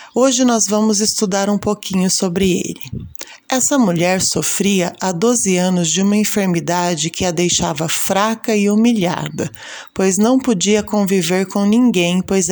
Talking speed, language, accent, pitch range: 145 wpm, Portuguese, Brazilian, 180-225 Hz